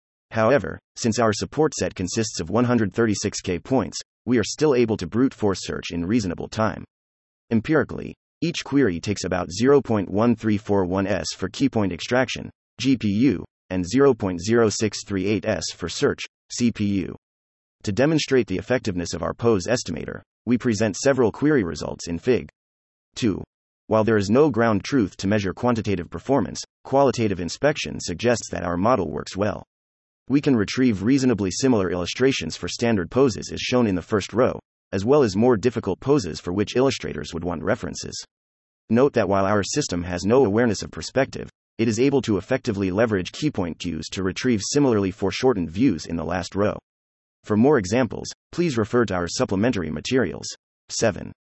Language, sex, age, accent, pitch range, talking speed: English, male, 30-49, American, 90-125 Hz, 155 wpm